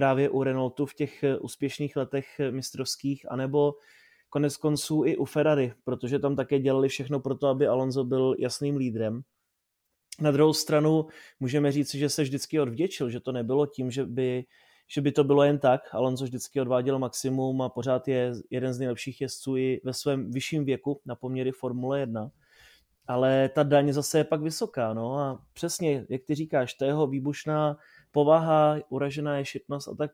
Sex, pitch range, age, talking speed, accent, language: male, 130-145 Hz, 20-39, 175 wpm, native, Czech